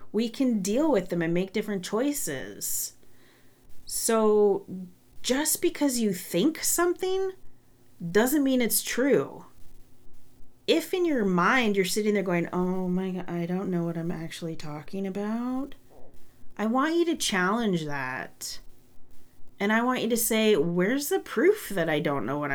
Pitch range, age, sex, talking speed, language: 165-235 Hz, 30-49, female, 155 wpm, English